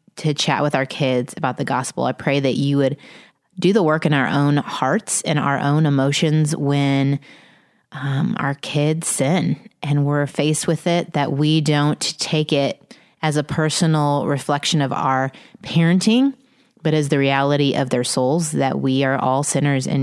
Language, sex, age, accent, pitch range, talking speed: English, female, 20-39, American, 135-160 Hz, 175 wpm